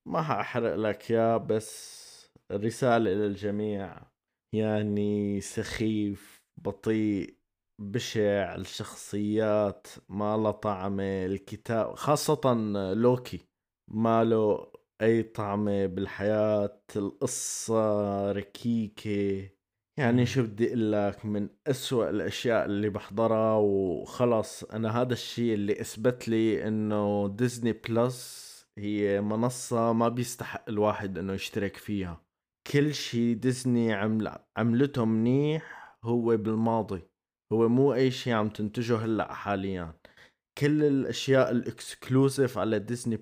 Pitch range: 100-120 Hz